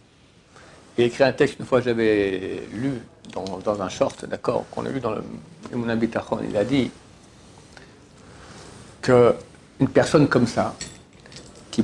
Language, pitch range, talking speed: French, 130-170 Hz, 140 wpm